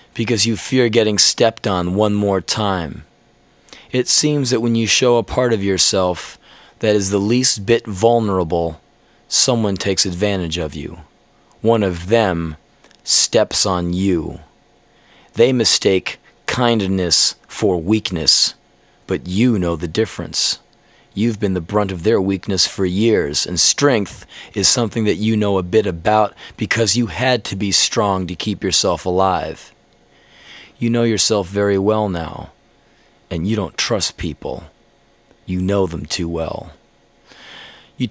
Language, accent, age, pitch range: English, American, 30-49, 90-110 Hz